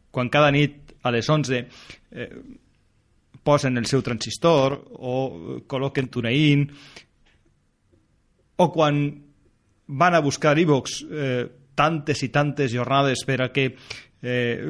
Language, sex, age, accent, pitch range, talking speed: Spanish, male, 30-49, Spanish, 125-150 Hz, 120 wpm